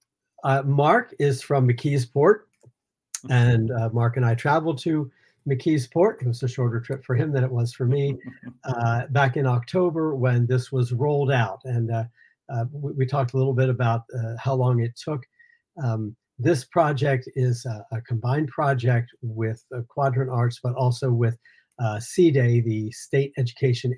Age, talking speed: 50-69, 175 wpm